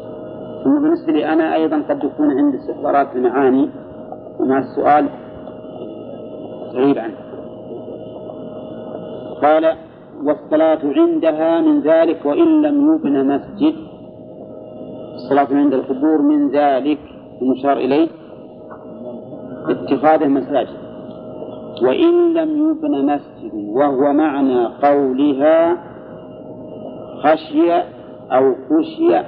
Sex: male